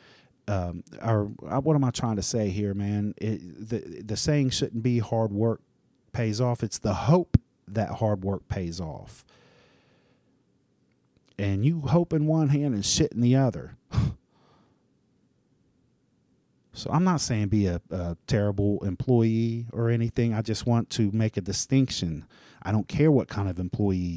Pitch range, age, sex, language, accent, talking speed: 100-125 Hz, 40-59, male, English, American, 160 wpm